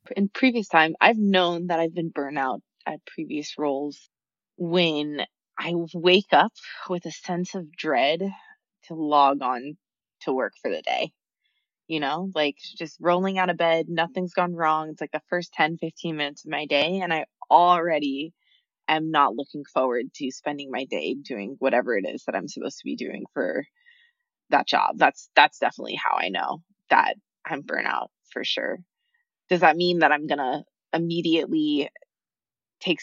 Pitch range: 150-230 Hz